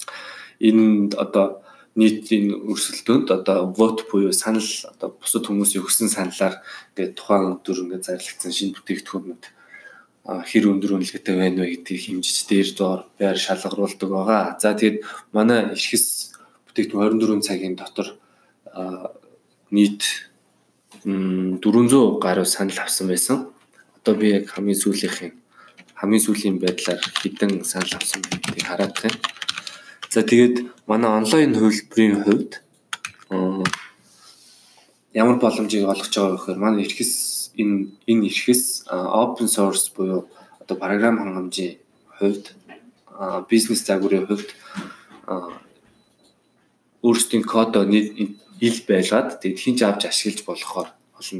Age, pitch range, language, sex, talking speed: 20-39, 95-110 Hz, English, male, 80 wpm